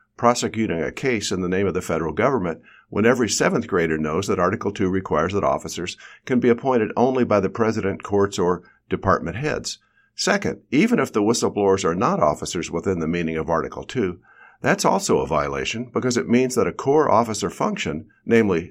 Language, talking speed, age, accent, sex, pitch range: English, 190 wpm, 50-69, American, male, 90-115 Hz